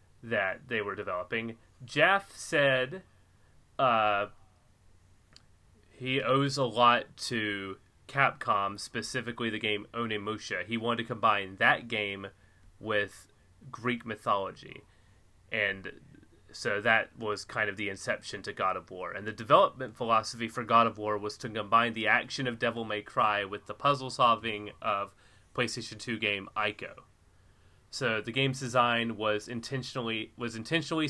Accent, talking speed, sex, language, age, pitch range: American, 140 wpm, male, English, 30-49, 100-120 Hz